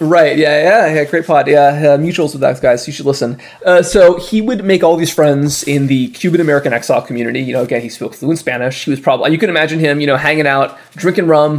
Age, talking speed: 20-39, 255 wpm